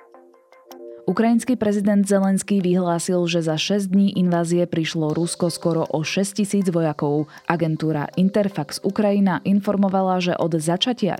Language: Slovak